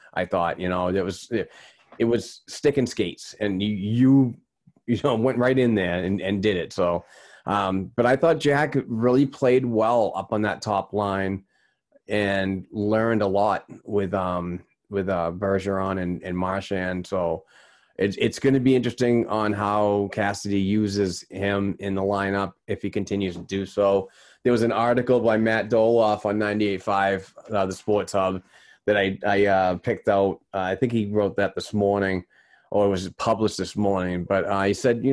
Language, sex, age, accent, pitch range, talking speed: English, male, 30-49, American, 100-125 Hz, 185 wpm